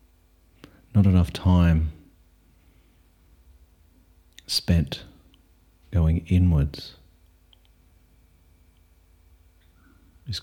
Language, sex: English, male